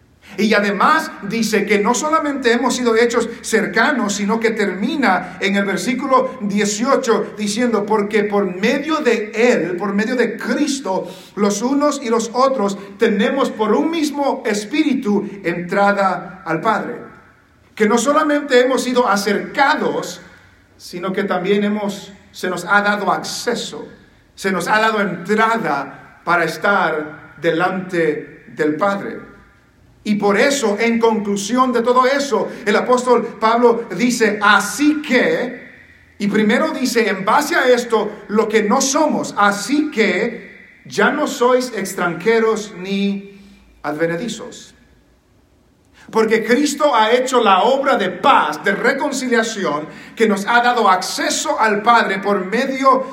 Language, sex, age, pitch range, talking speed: English, male, 50-69, 200-245 Hz, 130 wpm